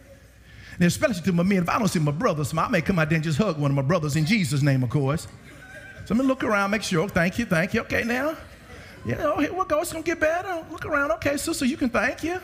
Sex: male